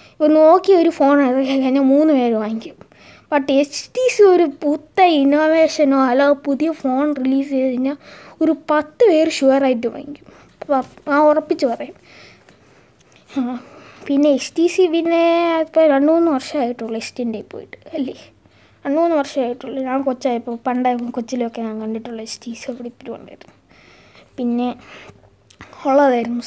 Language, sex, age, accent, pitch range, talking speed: Malayalam, female, 20-39, native, 250-310 Hz, 130 wpm